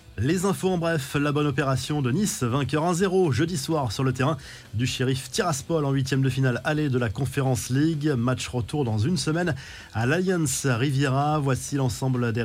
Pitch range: 125-160 Hz